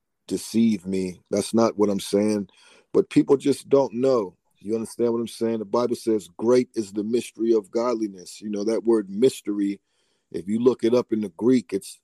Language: English